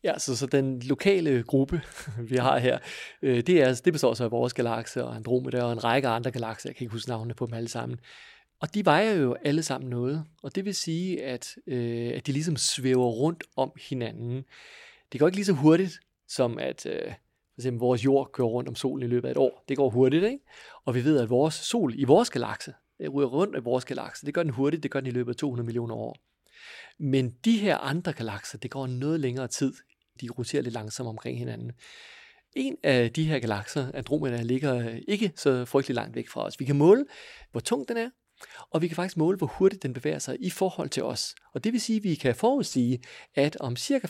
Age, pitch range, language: 40-59, 125-165 Hz, Danish